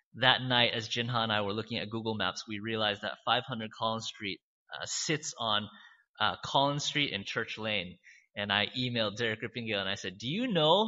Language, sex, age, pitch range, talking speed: English, male, 20-39, 105-155 Hz, 205 wpm